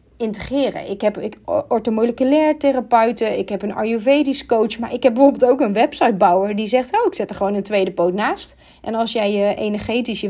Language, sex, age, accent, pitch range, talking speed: Dutch, female, 30-49, Dutch, 205-280 Hz, 210 wpm